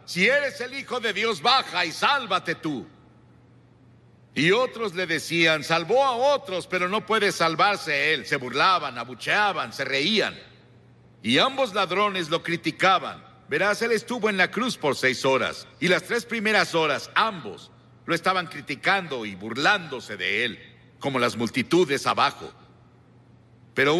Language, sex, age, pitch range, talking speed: Spanish, male, 60-79, 130-205 Hz, 150 wpm